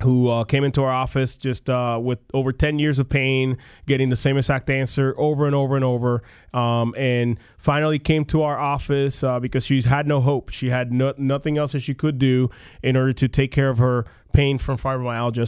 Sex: male